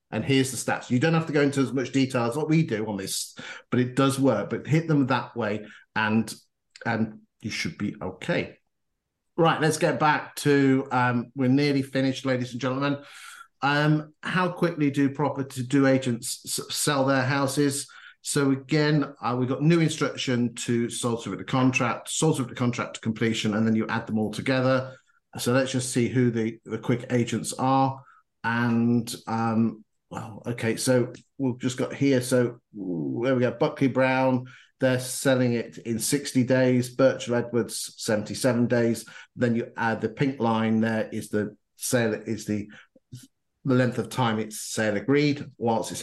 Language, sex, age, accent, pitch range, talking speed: English, male, 50-69, British, 115-140 Hz, 180 wpm